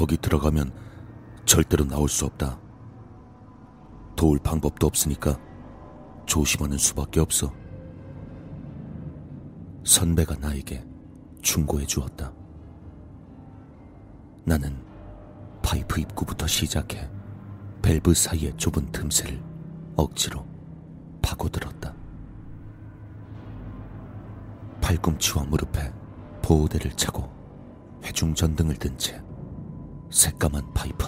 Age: 40-59